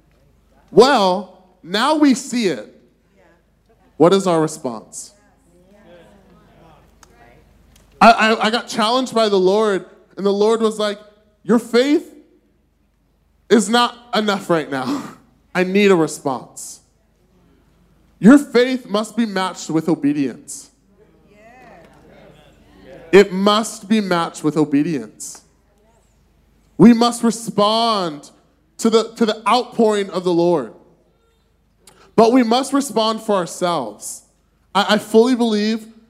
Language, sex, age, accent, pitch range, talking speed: English, male, 10-29, American, 175-230 Hz, 110 wpm